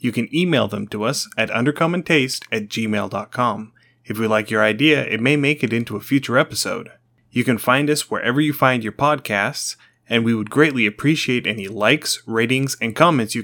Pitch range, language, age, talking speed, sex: 110-140 Hz, English, 30-49, 190 wpm, male